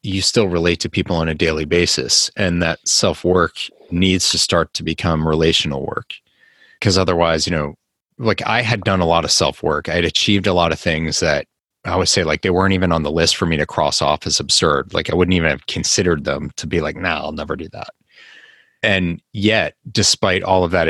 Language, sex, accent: English, male, American